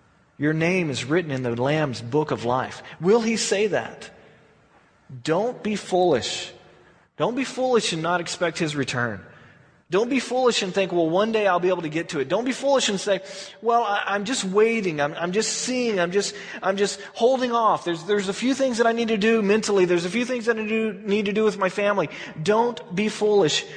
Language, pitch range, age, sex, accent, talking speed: English, 135-205 Hz, 30-49, male, American, 220 wpm